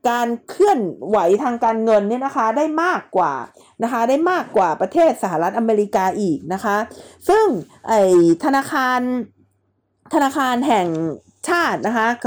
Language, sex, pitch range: Thai, female, 215-280 Hz